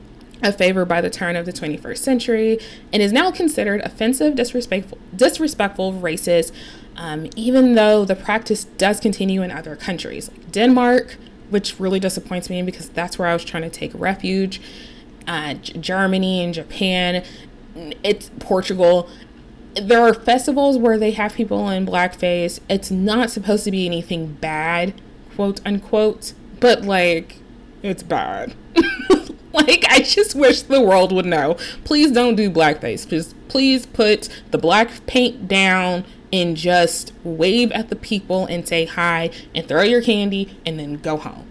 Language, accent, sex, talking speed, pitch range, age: English, American, female, 150 wpm, 170-230 Hz, 20-39